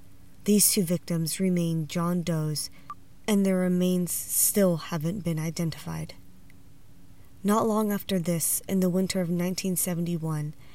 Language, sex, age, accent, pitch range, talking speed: English, female, 20-39, American, 160-190 Hz, 125 wpm